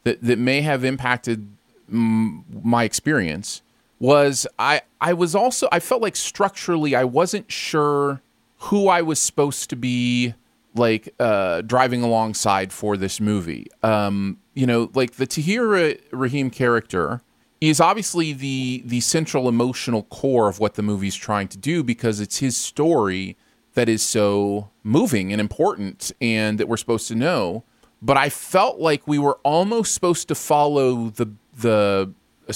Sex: male